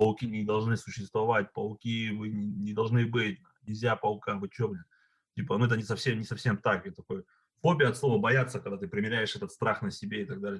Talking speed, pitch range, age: 215 wpm, 105-135 Hz, 30-49